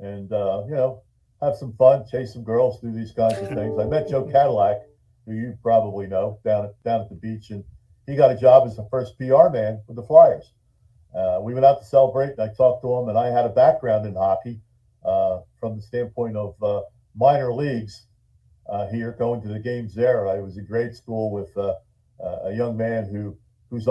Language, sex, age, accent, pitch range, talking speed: English, male, 50-69, American, 110-130 Hz, 220 wpm